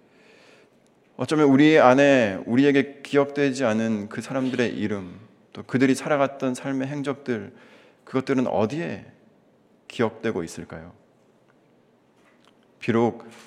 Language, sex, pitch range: Korean, male, 110-135 Hz